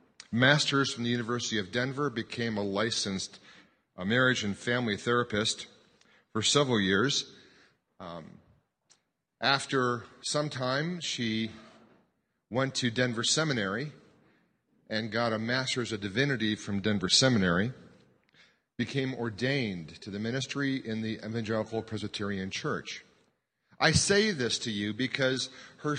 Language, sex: English, male